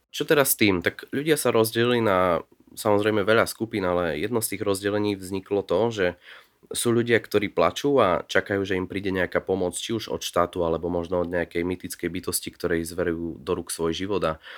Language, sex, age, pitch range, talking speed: Slovak, male, 20-39, 90-105 Hz, 200 wpm